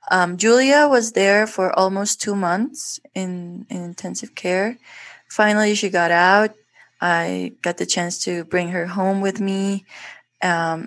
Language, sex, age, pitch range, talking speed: English, female, 20-39, 175-205 Hz, 150 wpm